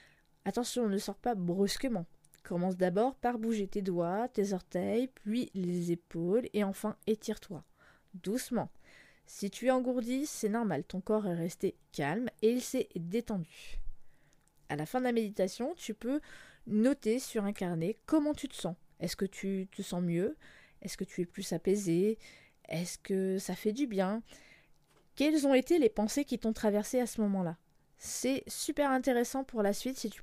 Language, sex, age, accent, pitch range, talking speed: French, female, 20-39, French, 185-245 Hz, 175 wpm